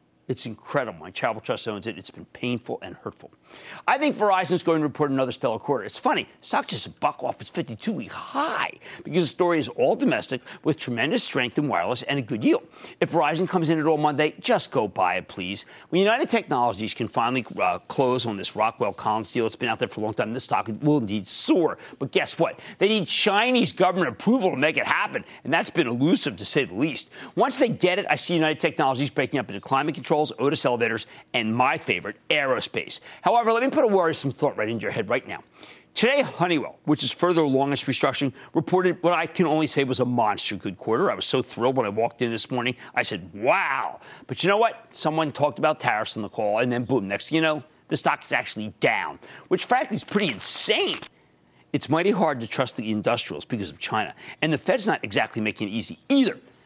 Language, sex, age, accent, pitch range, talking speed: English, male, 40-59, American, 120-175 Hz, 230 wpm